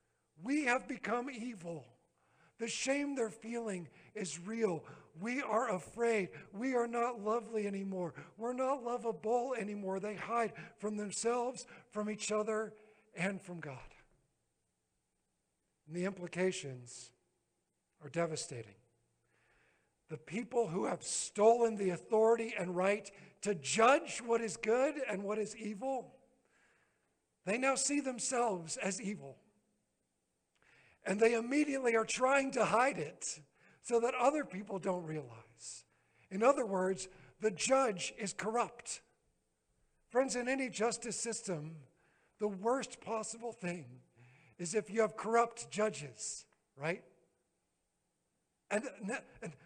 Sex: male